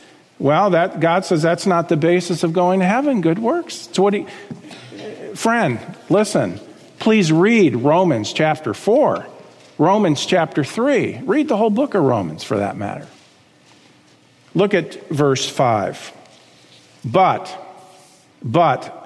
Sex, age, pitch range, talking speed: male, 50-69, 145-205 Hz, 130 wpm